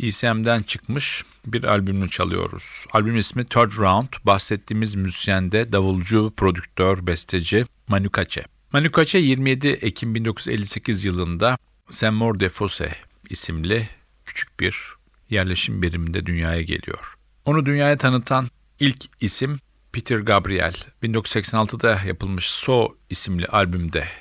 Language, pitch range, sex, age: Turkish, 90-115 Hz, male, 50-69